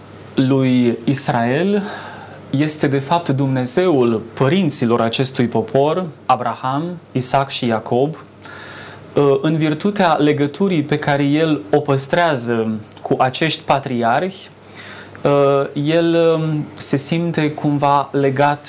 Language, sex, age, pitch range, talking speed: Romanian, male, 20-39, 120-150 Hz, 95 wpm